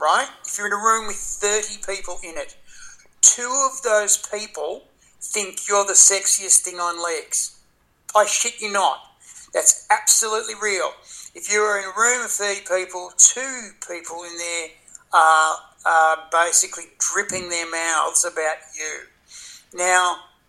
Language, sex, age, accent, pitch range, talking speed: English, male, 50-69, Australian, 165-210 Hz, 145 wpm